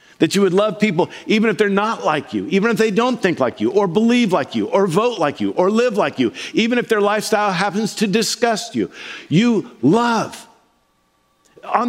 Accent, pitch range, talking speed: American, 160-215 Hz, 205 wpm